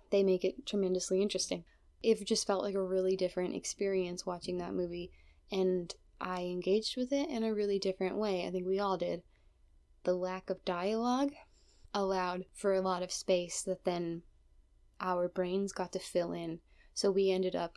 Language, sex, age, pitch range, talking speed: English, female, 10-29, 180-200 Hz, 180 wpm